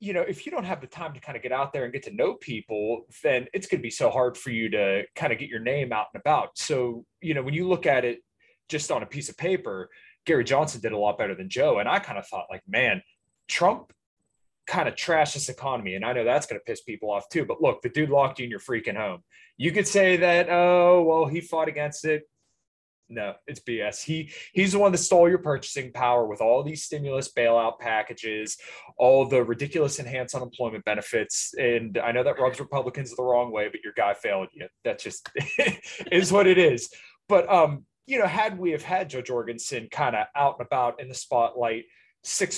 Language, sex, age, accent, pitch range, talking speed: English, male, 20-39, American, 120-160 Hz, 235 wpm